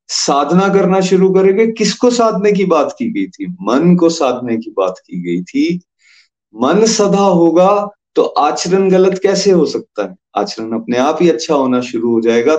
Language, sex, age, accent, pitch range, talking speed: Hindi, male, 30-49, native, 120-180 Hz, 180 wpm